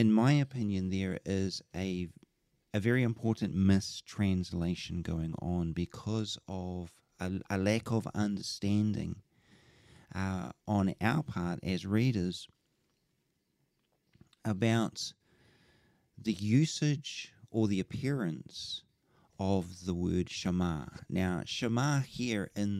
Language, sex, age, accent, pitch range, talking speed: English, male, 40-59, Australian, 90-110 Hz, 105 wpm